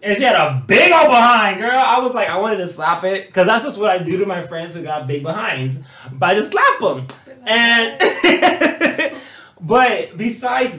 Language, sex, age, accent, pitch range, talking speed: English, male, 20-39, American, 135-215 Hz, 205 wpm